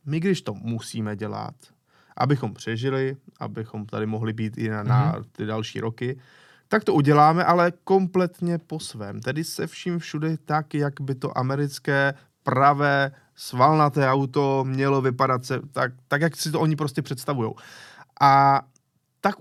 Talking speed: 150 wpm